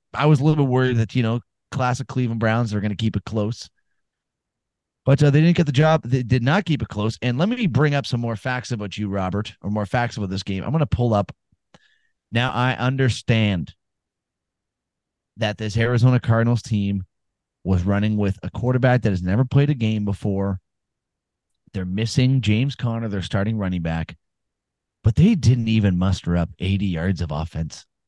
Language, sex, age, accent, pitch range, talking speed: English, male, 30-49, American, 95-130 Hz, 195 wpm